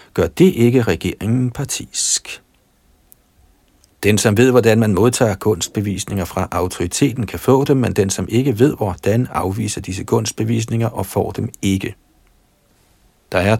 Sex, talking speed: male, 140 wpm